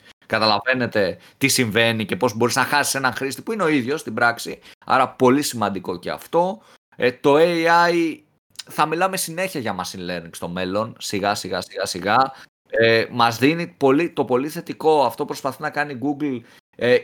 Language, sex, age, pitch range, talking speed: Greek, male, 30-49, 110-150 Hz, 175 wpm